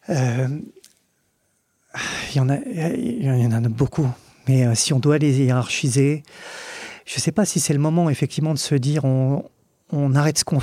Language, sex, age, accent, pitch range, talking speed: French, male, 40-59, French, 135-160 Hz, 165 wpm